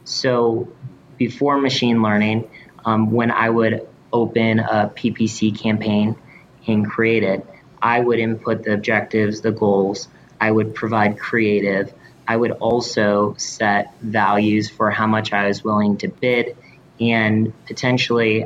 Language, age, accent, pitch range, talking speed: English, 20-39, American, 105-120 Hz, 135 wpm